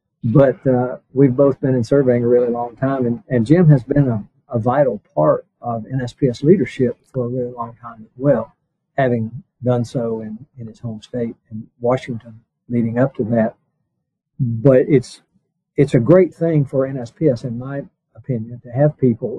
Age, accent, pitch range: 50-69, American, 120-140 Hz